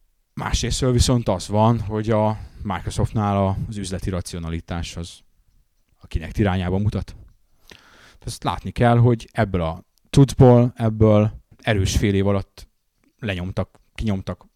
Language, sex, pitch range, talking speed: Hungarian, male, 100-125 Hz, 115 wpm